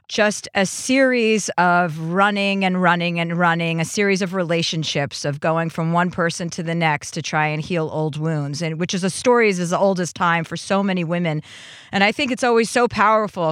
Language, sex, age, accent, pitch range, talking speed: English, female, 40-59, American, 165-205 Hz, 215 wpm